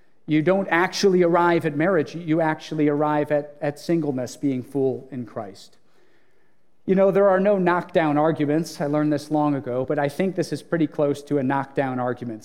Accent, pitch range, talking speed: American, 150-185 Hz, 190 wpm